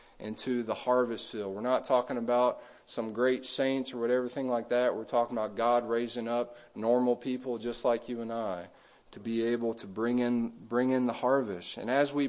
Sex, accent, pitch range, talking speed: male, American, 120-140 Hz, 205 wpm